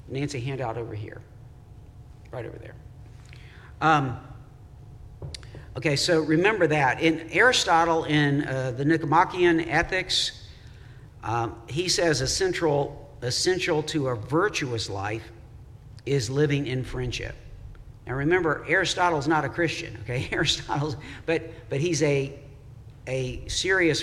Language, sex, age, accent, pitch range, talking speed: English, male, 50-69, American, 115-150 Hz, 120 wpm